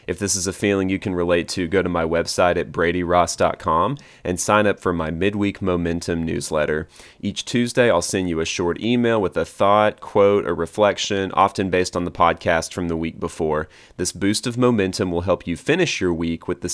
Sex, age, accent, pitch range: male, 30-49, American, 85-100 Hz